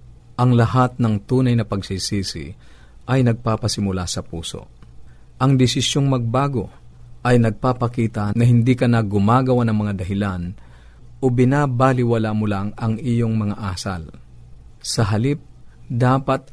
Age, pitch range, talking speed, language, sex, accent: 50-69, 95-125 Hz, 120 wpm, Filipino, male, native